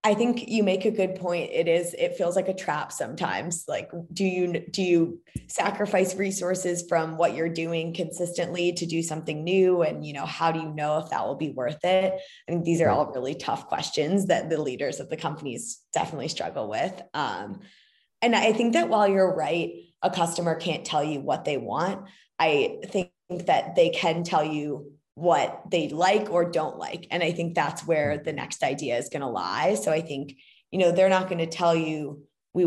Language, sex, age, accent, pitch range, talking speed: English, female, 20-39, American, 160-190 Hz, 210 wpm